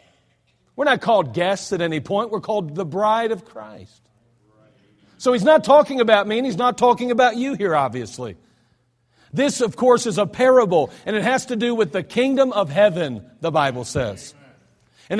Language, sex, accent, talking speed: English, male, American, 185 wpm